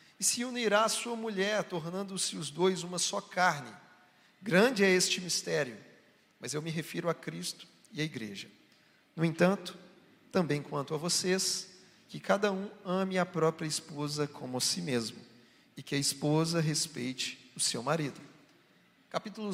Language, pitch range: Portuguese, 160-200 Hz